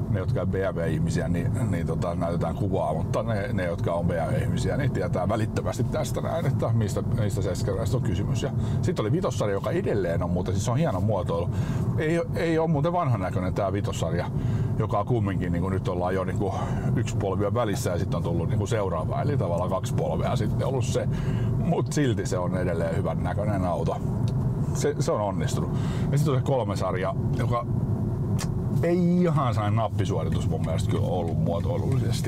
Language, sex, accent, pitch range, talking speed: Finnish, male, native, 100-130 Hz, 180 wpm